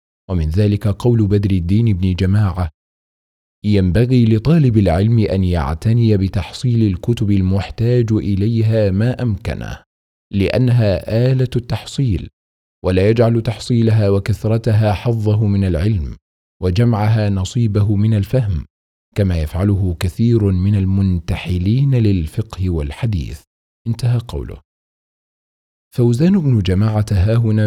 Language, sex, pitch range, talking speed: Arabic, male, 90-115 Hz, 100 wpm